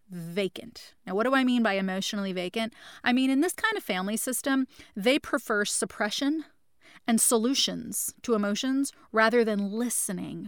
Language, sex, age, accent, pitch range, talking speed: English, female, 30-49, American, 195-245 Hz, 155 wpm